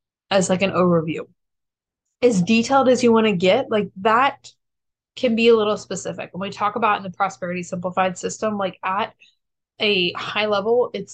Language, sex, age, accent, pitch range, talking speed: English, female, 20-39, American, 180-235 Hz, 180 wpm